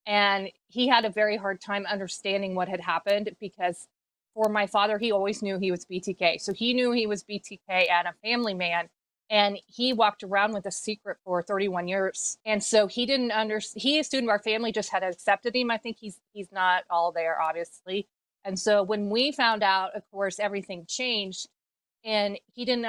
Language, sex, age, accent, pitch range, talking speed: English, female, 30-49, American, 190-220 Hz, 200 wpm